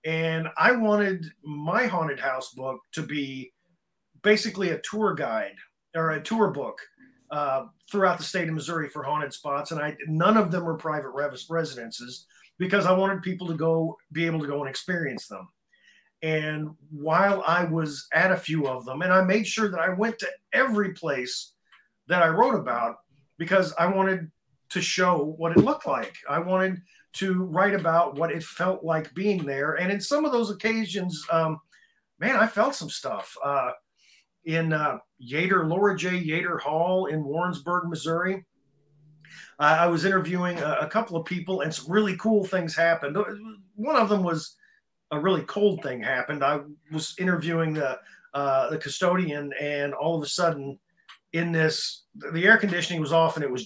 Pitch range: 150-190 Hz